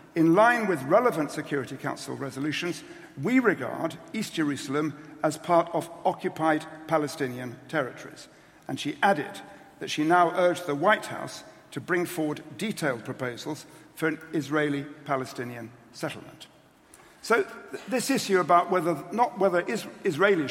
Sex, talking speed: male, 130 wpm